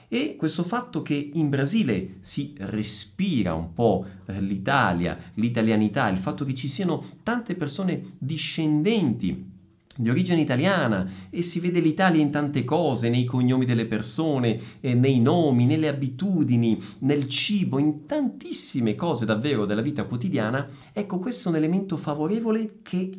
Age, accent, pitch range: 50-69, native, 110-175 Hz